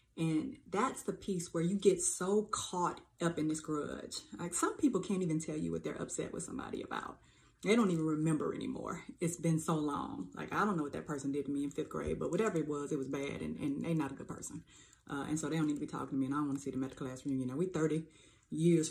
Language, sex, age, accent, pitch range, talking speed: English, female, 30-49, American, 140-160 Hz, 280 wpm